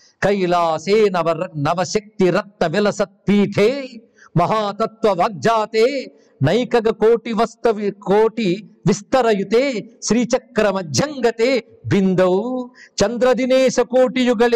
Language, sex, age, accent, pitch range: Telugu, male, 60-79, native, 175-230 Hz